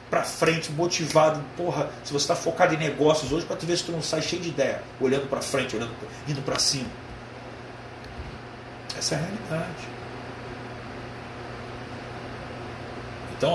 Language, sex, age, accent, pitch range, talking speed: Portuguese, male, 40-59, Brazilian, 120-140 Hz, 145 wpm